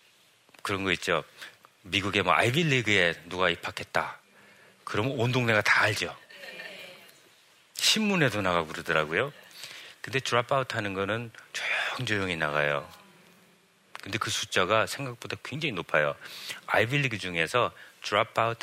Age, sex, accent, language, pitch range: 40-59, male, native, Korean, 90-130 Hz